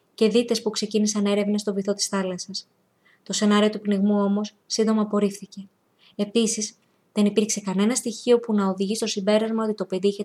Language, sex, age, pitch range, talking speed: Greek, female, 20-39, 195-220 Hz, 175 wpm